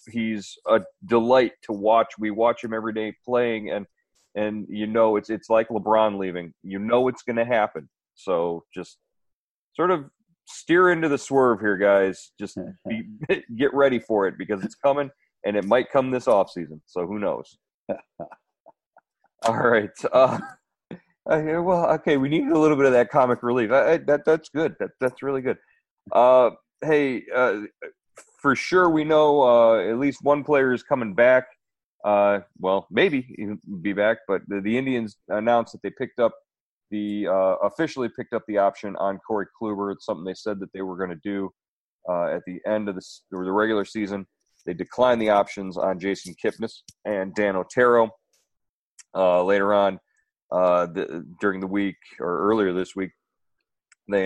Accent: American